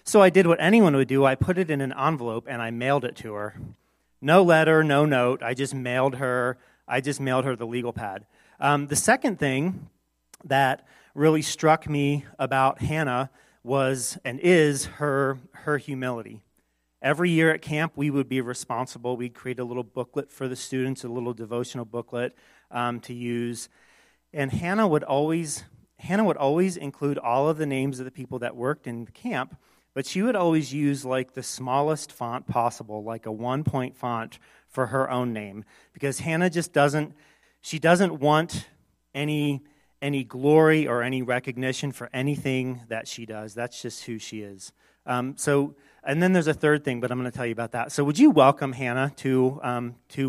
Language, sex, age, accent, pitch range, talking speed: English, male, 40-59, American, 125-150 Hz, 190 wpm